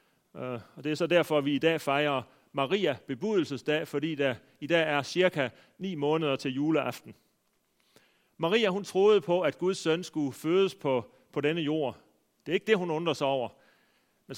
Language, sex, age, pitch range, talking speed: Danish, male, 40-59, 140-180 Hz, 180 wpm